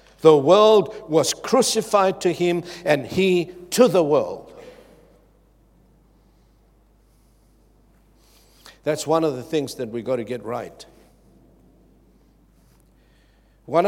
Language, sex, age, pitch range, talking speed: English, male, 60-79, 115-165 Hz, 100 wpm